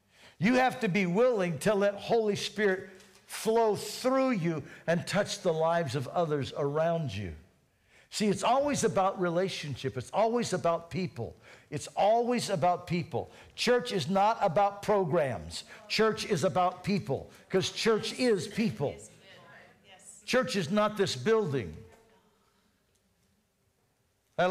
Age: 60-79